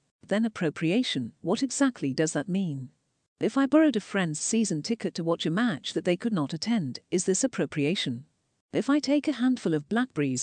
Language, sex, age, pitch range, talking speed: English, female, 50-69, 150-230 Hz, 190 wpm